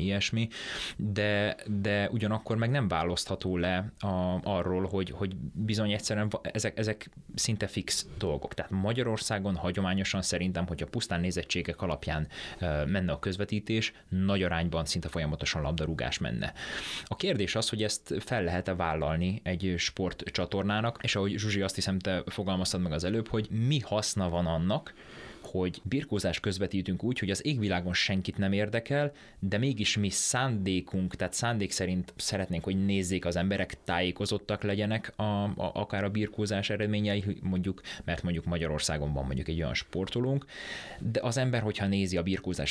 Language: Hungarian